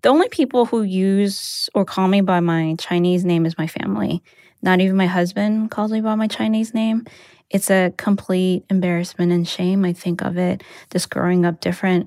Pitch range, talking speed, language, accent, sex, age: 175-195 Hz, 195 wpm, English, American, female, 20-39